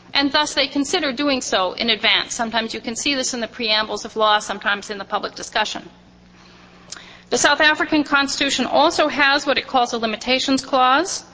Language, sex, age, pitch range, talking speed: English, female, 40-59, 220-300 Hz, 185 wpm